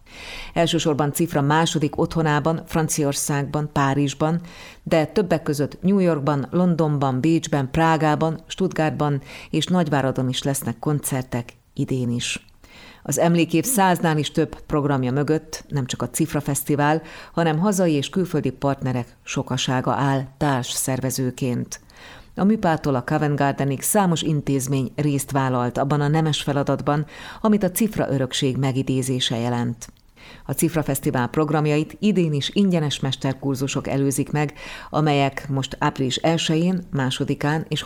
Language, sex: Hungarian, female